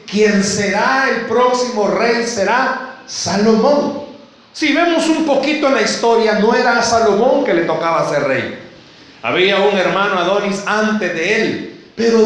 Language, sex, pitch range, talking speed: Spanish, male, 195-250 Hz, 145 wpm